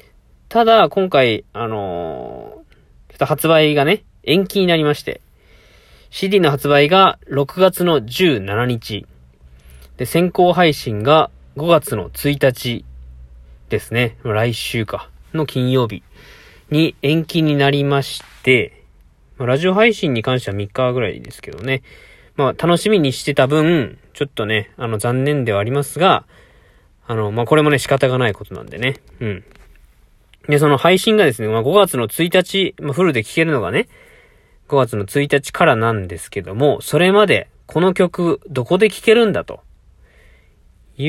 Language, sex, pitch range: Japanese, male, 105-155 Hz